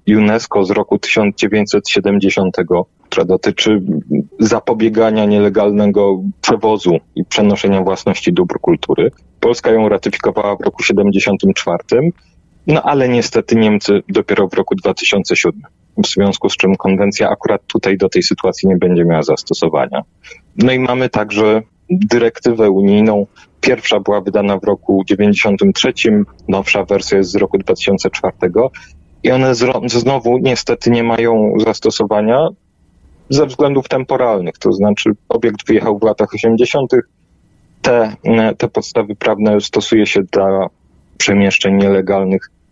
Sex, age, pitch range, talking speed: male, 30-49, 95-115 Hz, 120 wpm